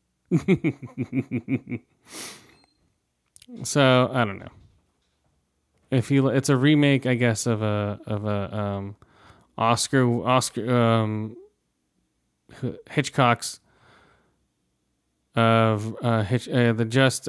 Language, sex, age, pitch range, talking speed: English, male, 20-39, 110-135 Hz, 90 wpm